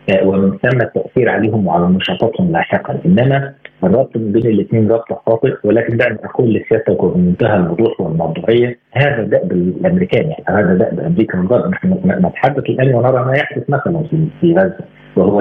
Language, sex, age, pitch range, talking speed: Arabic, male, 50-69, 110-145 Hz, 155 wpm